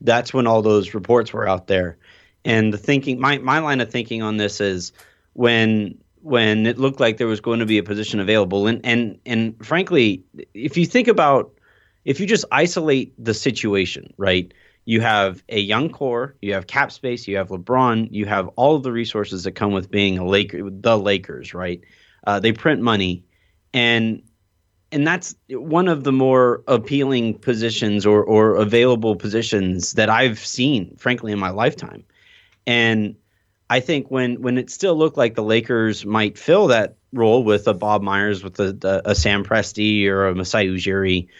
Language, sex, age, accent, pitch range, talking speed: English, male, 30-49, American, 100-120 Hz, 185 wpm